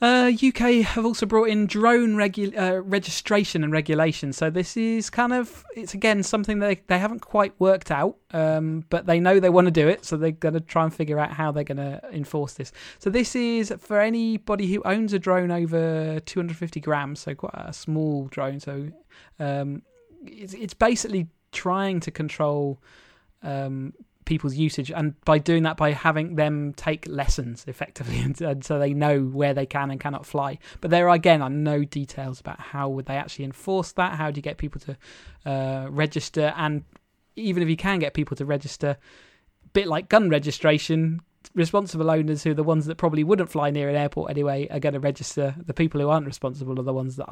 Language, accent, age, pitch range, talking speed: English, British, 30-49, 145-185 Hz, 205 wpm